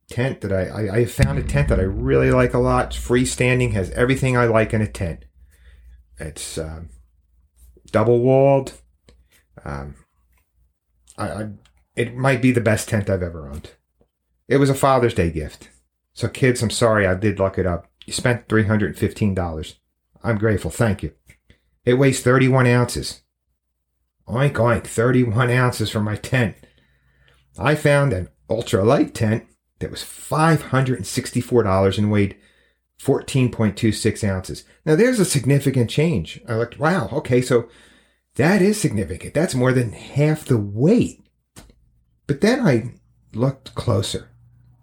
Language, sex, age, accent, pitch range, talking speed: English, male, 40-59, American, 85-125 Hz, 145 wpm